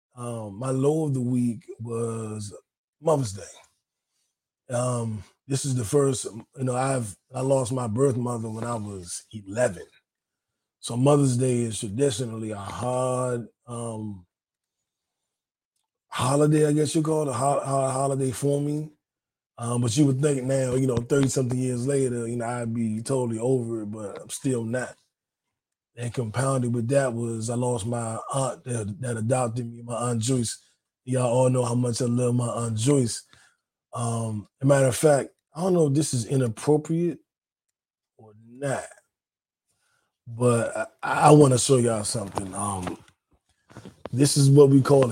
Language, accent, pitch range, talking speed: English, American, 115-135 Hz, 165 wpm